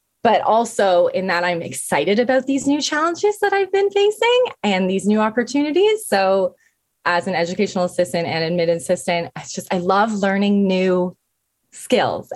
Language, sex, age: English, female, 20-39